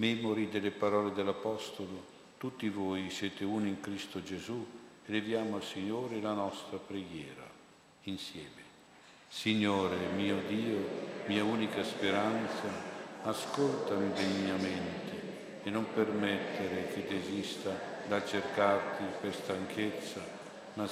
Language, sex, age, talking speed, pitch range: Italian, male, 60-79, 105 wpm, 95-105 Hz